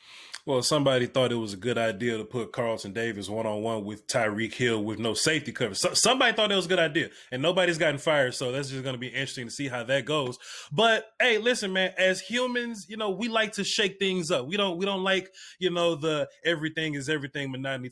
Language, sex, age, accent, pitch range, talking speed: English, male, 20-39, American, 150-215 Hz, 230 wpm